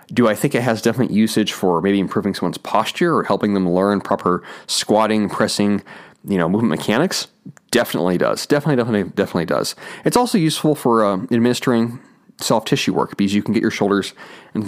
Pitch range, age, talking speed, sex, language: 100-140 Hz, 30-49, 185 wpm, male, English